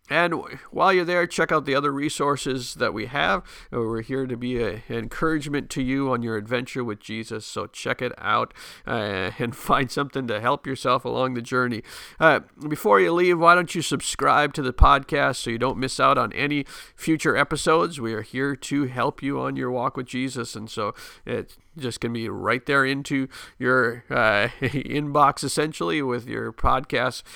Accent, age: American, 50-69